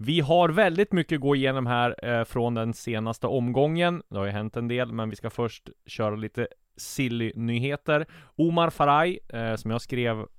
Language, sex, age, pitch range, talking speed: Swedish, male, 30-49, 100-125 Hz, 185 wpm